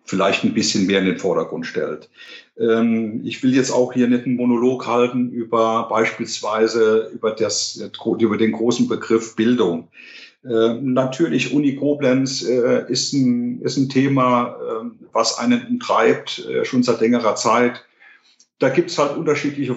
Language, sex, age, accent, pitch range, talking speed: German, male, 50-69, German, 110-130 Hz, 135 wpm